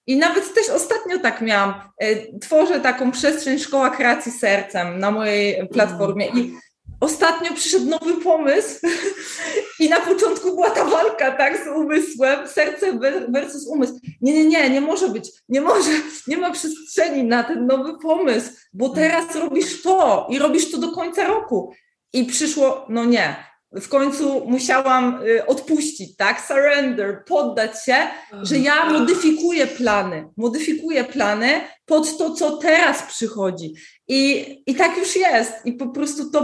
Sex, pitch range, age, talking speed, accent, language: female, 240-320 Hz, 20-39, 145 wpm, native, Polish